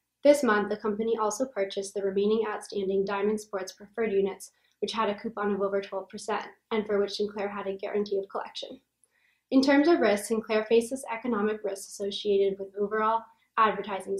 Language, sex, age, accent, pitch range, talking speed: English, female, 10-29, American, 200-225 Hz, 175 wpm